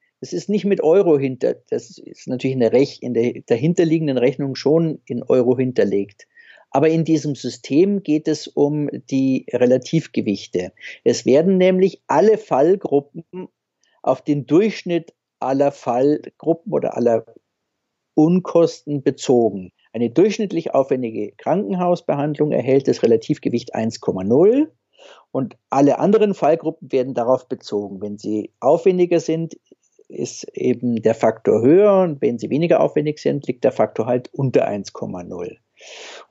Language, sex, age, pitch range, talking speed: German, male, 50-69, 125-180 Hz, 125 wpm